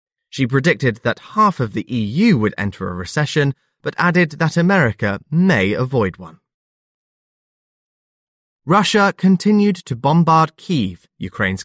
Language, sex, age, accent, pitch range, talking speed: English, male, 20-39, British, 105-165 Hz, 125 wpm